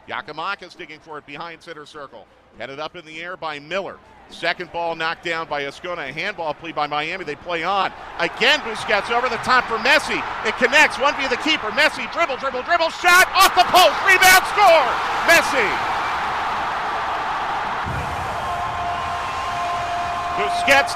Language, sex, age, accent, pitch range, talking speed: English, male, 50-69, American, 165-255 Hz, 150 wpm